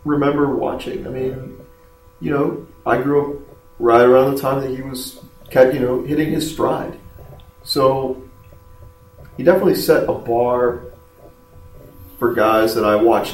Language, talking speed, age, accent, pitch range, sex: English, 150 wpm, 30-49, American, 100-145 Hz, male